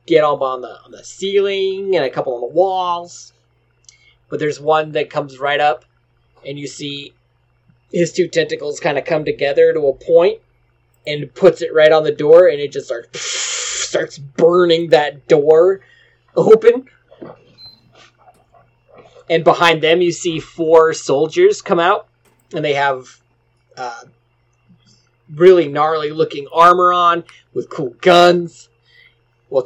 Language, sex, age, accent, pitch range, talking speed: English, male, 30-49, American, 120-175 Hz, 145 wpm